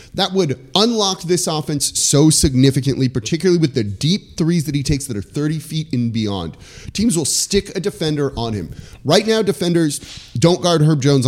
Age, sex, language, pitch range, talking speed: 30-49, male, English, 120-165 Hz, 185 wpm